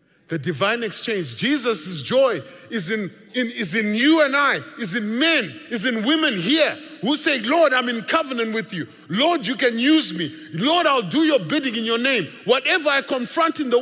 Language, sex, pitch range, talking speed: English, male, 200-300 Hz, 190 wpm